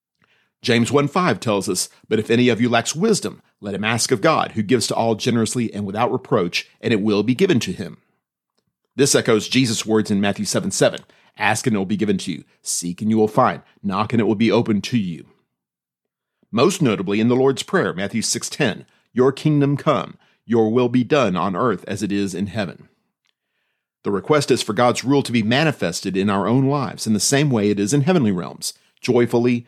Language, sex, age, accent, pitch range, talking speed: English, male, 40-59, American, 110-155 Hz, 215 wpm